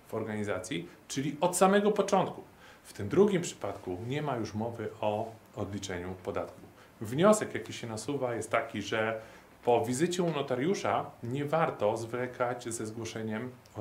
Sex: male